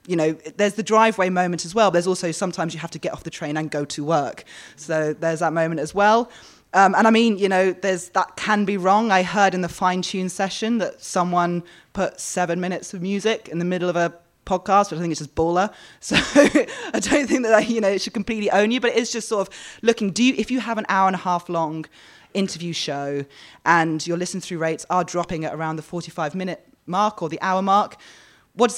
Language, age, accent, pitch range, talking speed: English, 20-39, British, 170-210 Hz, 240 wpm